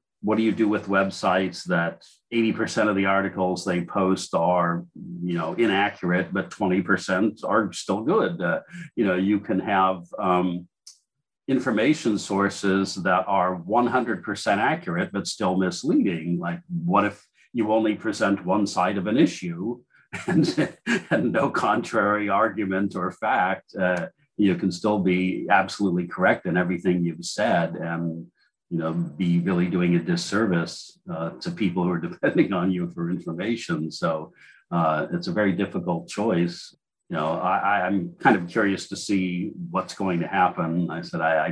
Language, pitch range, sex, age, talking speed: English, 85-100 Hz, male, 50-69, 155 wpm